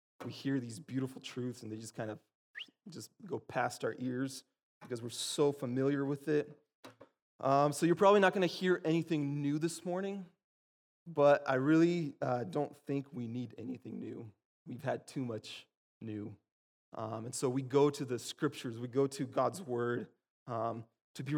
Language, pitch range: English, 120-145 Hz